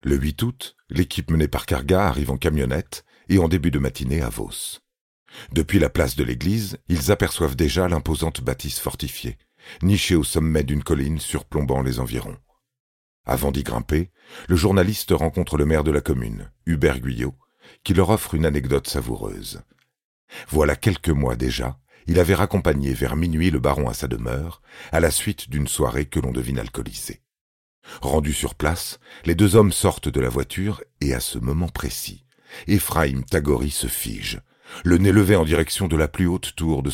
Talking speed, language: 175 wpm, French